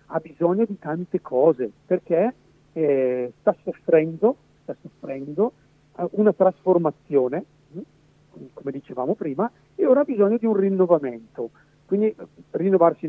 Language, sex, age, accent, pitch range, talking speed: Italian, male, 50-69, native, 150-190 Hz, 115 wpm